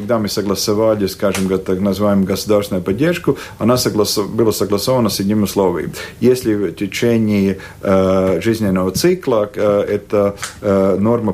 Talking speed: 130 wpm